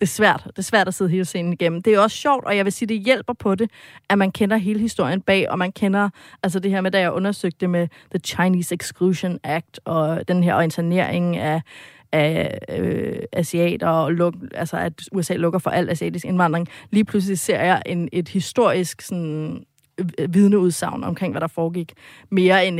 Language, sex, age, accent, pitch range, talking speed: Danish, female, 30-49, native, 175-215 Hz, 205 wpm